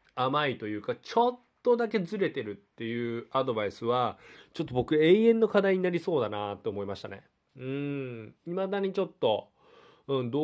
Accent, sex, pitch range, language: native, male, 115-175 Hz, Japanese